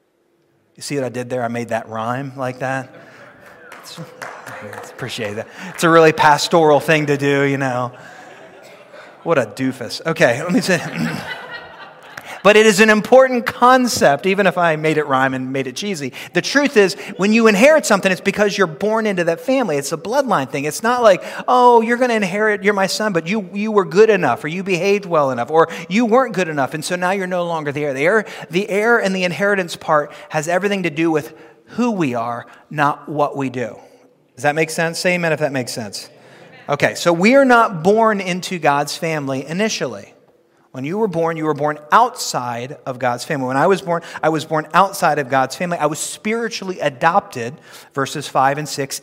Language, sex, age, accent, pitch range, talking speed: English, male, 30-49, American, 145-200 Hz, 205 wpm